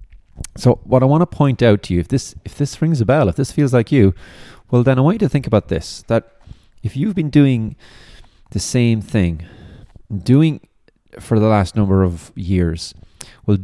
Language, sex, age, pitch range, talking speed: English, male, 30-49, 90-115 Hz, 200 wpm